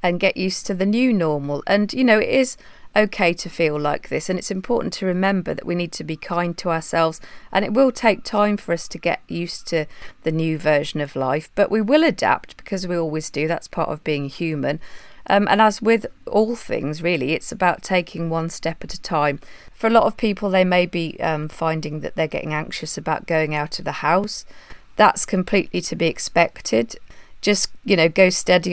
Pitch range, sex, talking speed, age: 160-200 Hz, female, 215 wpm, 30-49